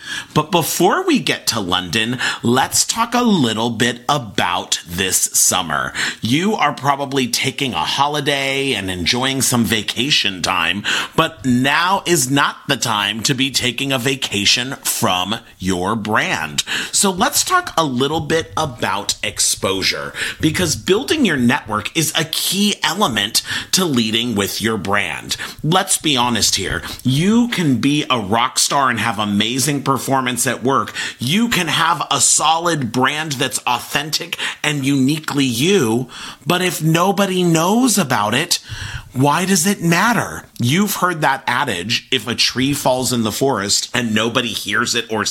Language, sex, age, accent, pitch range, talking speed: English, male, 30-49, American, 115-165 Hz, 150 wpm